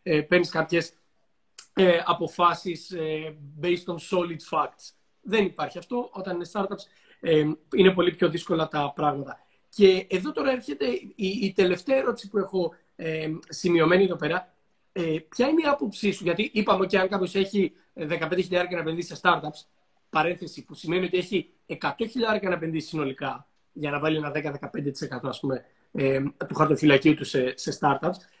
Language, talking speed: Greek, 165 wpm